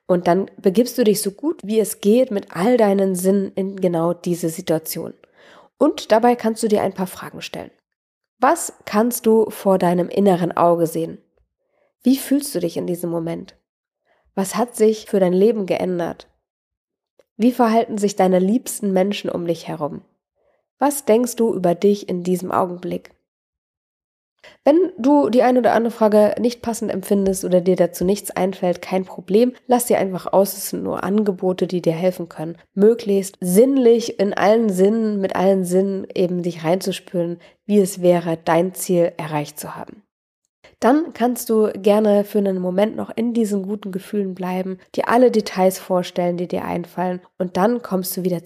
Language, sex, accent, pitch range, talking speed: German, female, German, 180-225 Hz, 170 wpm